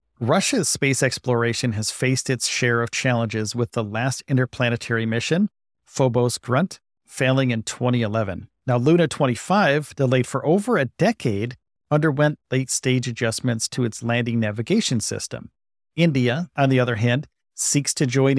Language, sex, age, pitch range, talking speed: English, male, 40-59, 115-145 Hz, 140 wpm